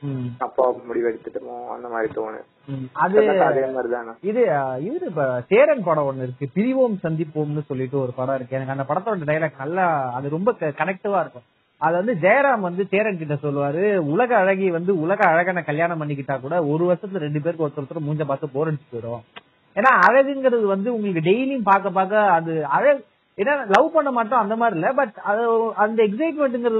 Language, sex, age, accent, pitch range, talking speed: Tamil, male, 30-49, native, 150-205 Hz, 150 wpm